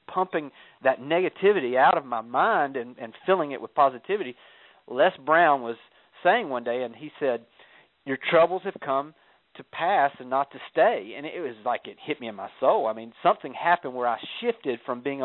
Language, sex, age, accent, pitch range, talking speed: English, male, 40-59, American, 120-170 Hz, 200 wpm